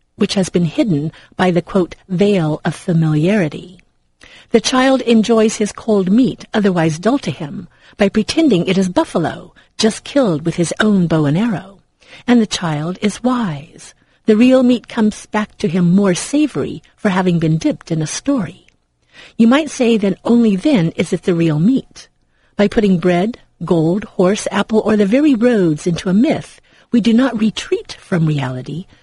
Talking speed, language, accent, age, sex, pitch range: 175 wpm, English, American, 50-69, female, 165-225 Hz